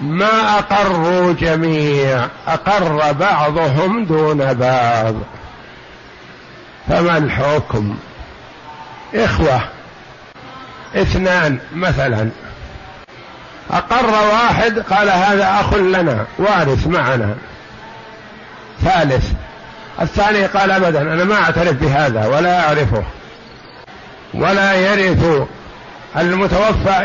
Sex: male